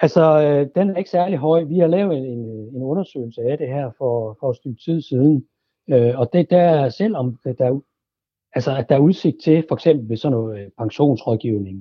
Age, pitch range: 60-79, 115-150 Hz